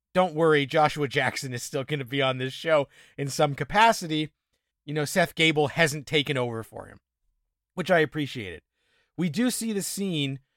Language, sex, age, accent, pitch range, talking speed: English, male, 30-49, American, 140-175 Hz, 185 wpm